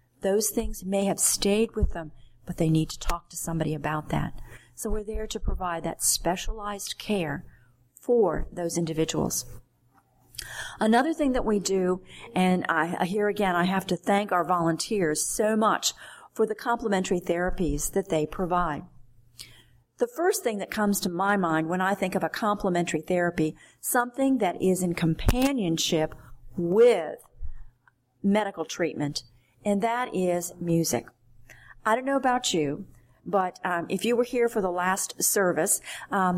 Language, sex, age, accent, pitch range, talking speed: English, female, 50-69, American, 165-210 Hz, 155 wpm